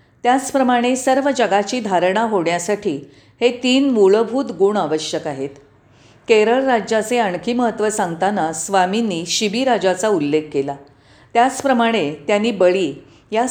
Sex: female